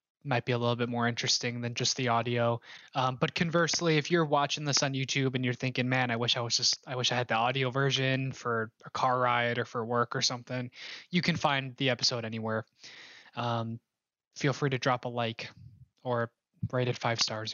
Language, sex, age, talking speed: English, male, 20-39, 215 wpm